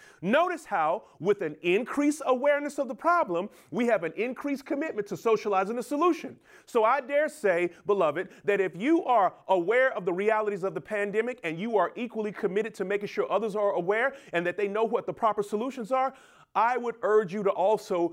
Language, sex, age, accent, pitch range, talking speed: English, male, 30-49, American, 165-230 Hz, 200 wpm